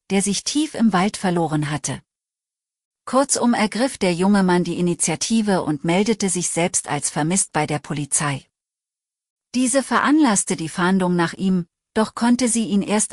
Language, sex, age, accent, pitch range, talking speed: German, female, 40-59, German, 165-220 Hz, 155 wpm